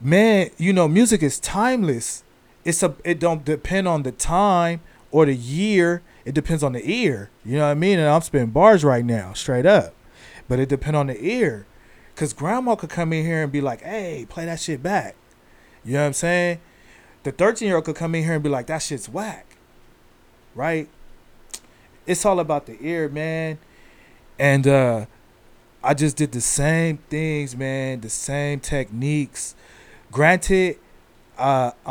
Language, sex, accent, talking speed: English, male, American, 180 wpm